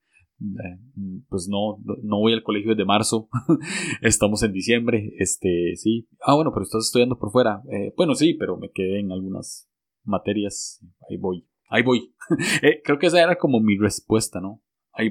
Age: 20-39